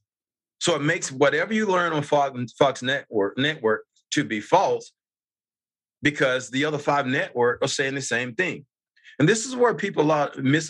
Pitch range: 120-165 Hz